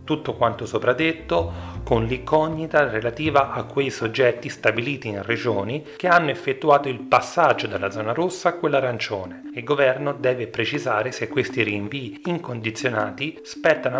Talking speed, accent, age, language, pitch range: 140 wpm, native, 30-49, Italian, 110-150 Hz